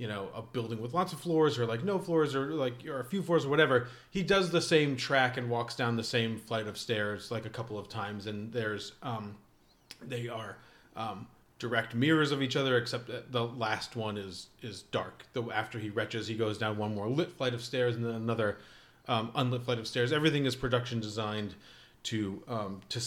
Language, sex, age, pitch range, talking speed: English, male, 30-49, 115-155 Hz, 220 wpm